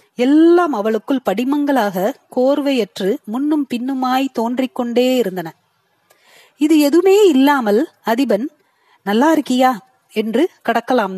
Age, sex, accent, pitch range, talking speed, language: 30-49, female, native, 200-270 Hz, 90 wpm, Tamil